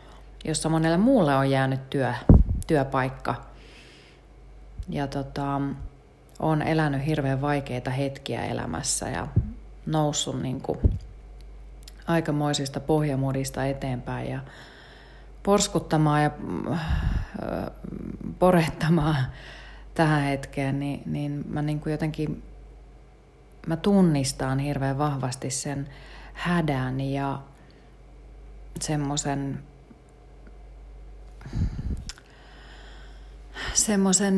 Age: 30-49